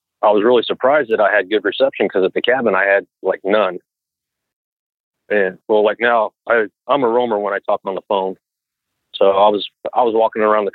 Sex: male